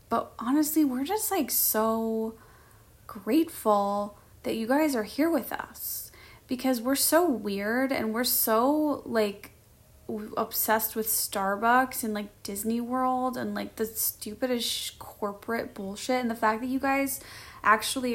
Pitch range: 215-255 Hz